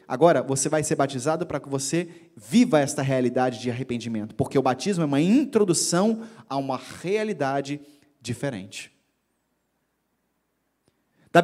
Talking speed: 125 wpm